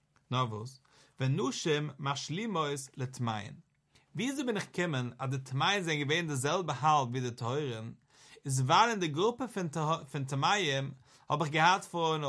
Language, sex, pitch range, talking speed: English, male, 135-180 Hz, 105 wpm